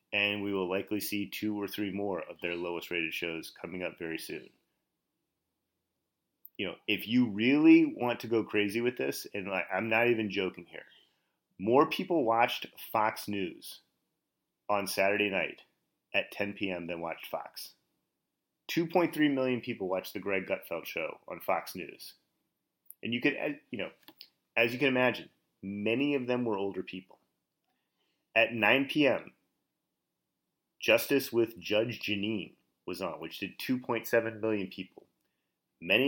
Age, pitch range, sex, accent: 30-49, 100-145 Hz, male, American